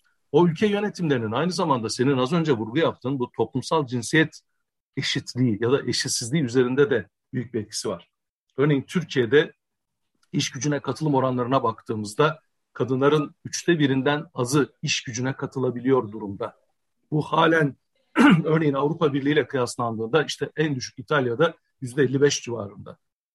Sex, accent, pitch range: male, native, 125-155 Hz